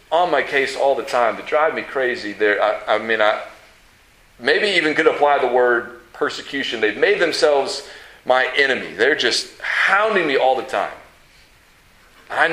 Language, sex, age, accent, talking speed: English, male, 40-59, American, 160 wpm